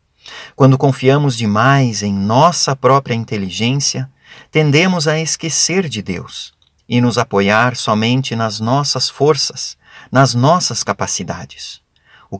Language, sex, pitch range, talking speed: Portuguese, male, 110-155 Hz, 110 wpm